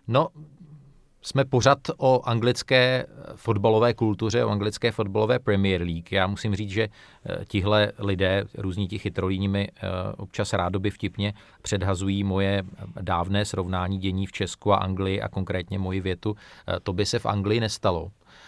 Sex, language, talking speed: male, Czech, 140 wpm